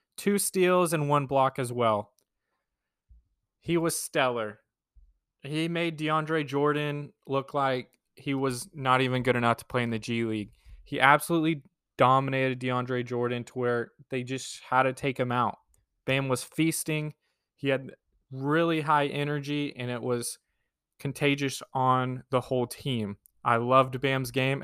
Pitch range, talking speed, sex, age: 125-145 Hz, 150 wpm, male, 20-39